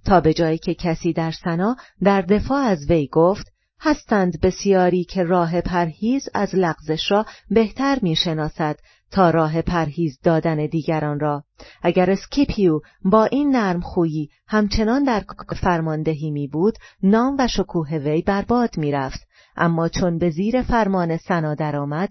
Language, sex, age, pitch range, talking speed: Persian, female, 40-59, 160-200 Hz, 145 wpm